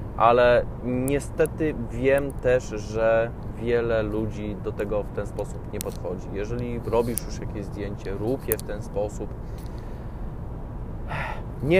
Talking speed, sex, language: 125 wpm, male, Polish